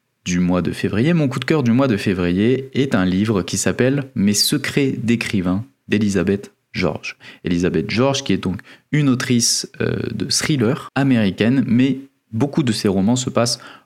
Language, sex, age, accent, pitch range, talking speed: French, male, 20-39, French, 95-125 Hz, 175 wpm